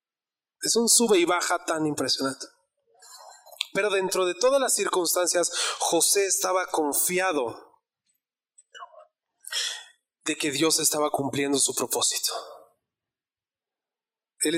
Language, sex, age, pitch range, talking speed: Spanish, male, 30-49, 150-230 Hz, 100 wpm